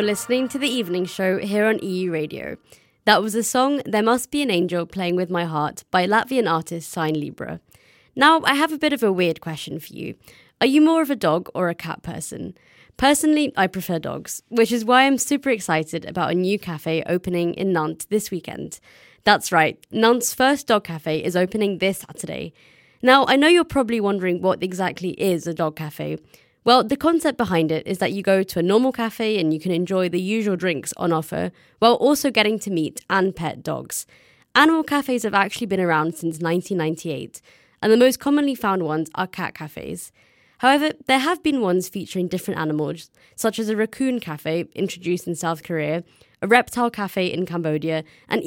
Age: 20-39